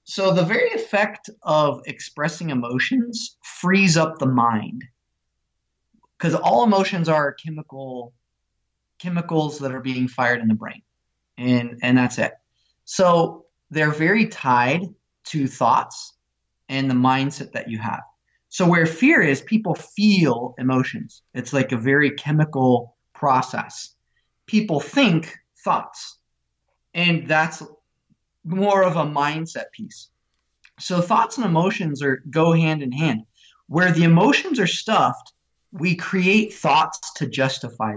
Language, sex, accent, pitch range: English, male, American, 130-175 Hz